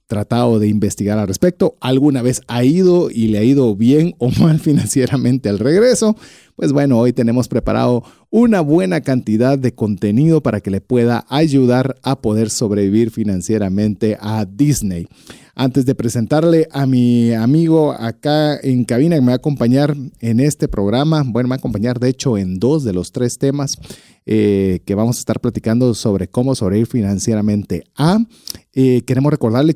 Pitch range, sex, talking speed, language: 120-160 Hz, male, 170 wpm, Spanish